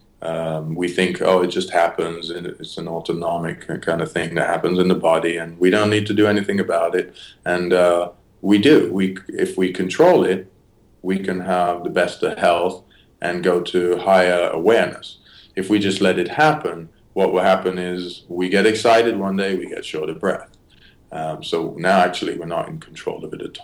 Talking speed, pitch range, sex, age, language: 205 wpm, 85-100 Hz, male, 30-49, English